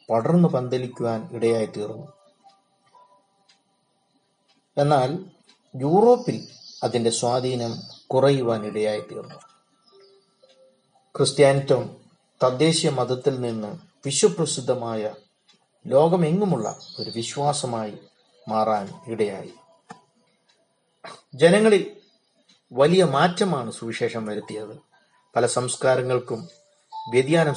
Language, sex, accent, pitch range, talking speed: Malayalam, male, native, 125-195 Hz, 65 wpm